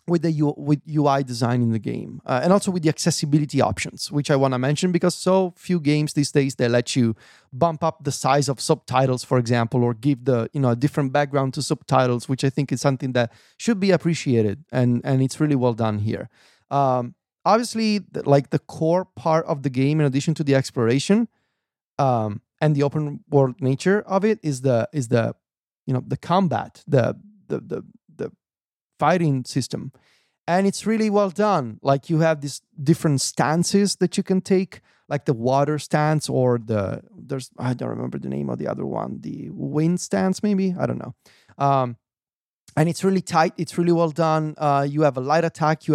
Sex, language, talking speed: male, English, 200 wpm